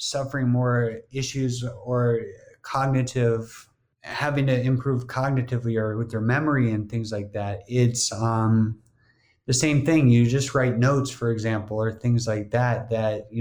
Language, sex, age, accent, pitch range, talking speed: English, male, 30-49, American, 115-130 Hz, 150 wpm